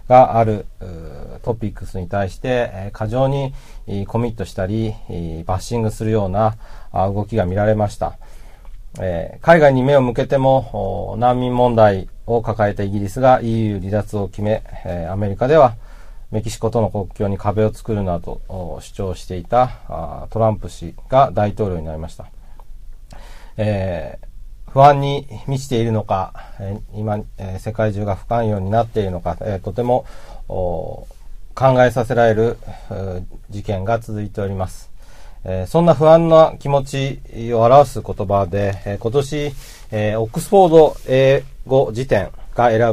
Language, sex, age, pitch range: Japanese, male, 40-59, 100-125 Hz